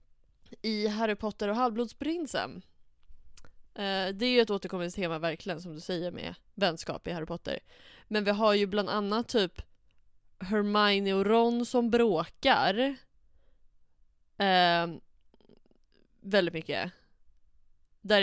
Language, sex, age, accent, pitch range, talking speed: Swedish, female, 20-39, native, 170-210 Hz, 120 wpm